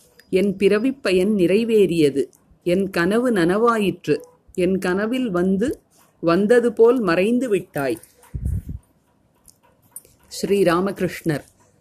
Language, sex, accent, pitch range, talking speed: Tamil, female, native, 175-220 Hz, 75 wpm